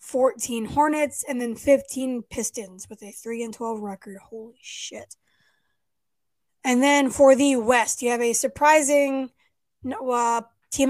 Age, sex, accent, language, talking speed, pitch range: 20-39, female, American, English, 130 wpm, 230-270 Hz